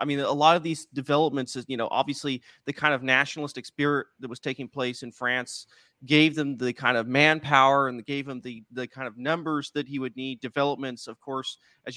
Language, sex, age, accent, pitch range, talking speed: English, male, 30-49, American, 130-160 Hz, 220 wpm